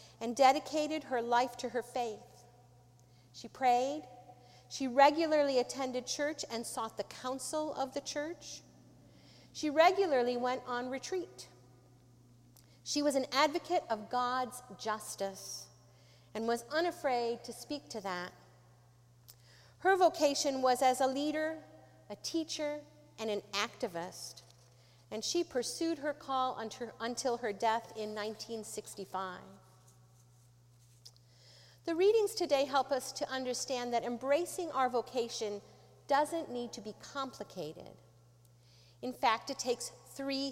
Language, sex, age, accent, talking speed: English, female, 50-69, American, 120 wpm